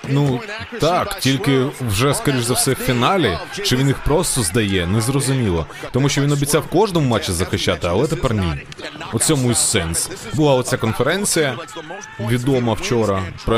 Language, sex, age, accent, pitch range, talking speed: Ukrainian, male, 20-39, native, 110-165 Hz, 150 wpm